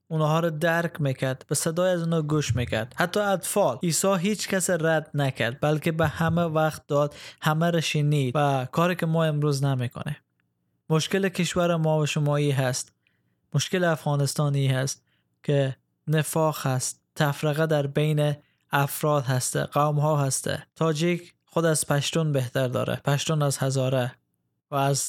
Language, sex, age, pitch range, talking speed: Persian, male, 20-39, 135-155 Hz, 150 wpm